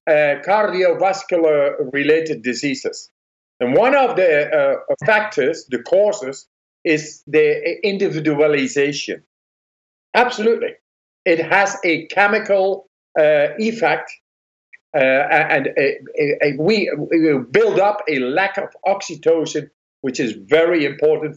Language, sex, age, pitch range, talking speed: English, male, 50-69, 125-190 Hz, 95 wpm